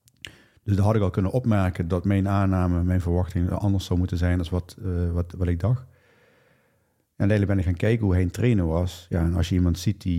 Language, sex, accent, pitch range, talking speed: Dutch, male, Dutch, 90-110 Hz, 235 wpm